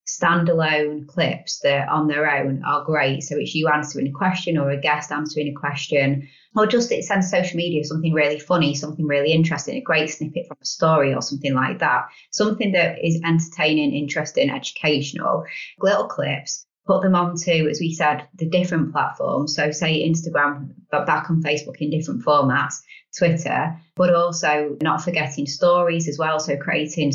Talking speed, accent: 175 wpm, British